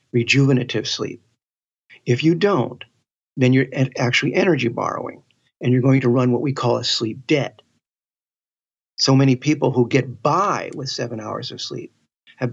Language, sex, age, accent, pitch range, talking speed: English, male, 50-69, American, 120-140 Hz, 160 wpm